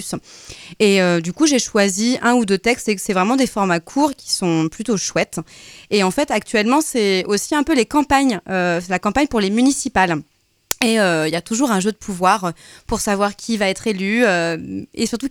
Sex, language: female, French